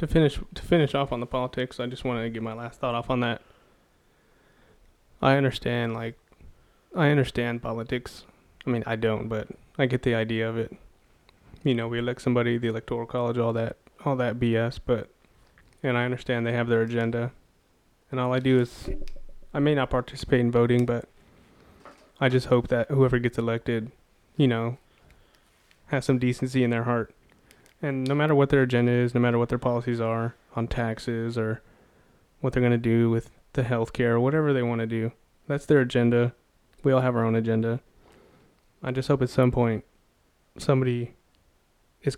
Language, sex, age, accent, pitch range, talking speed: English, male, 20-39, American, 115-130 Hz, 190 wpm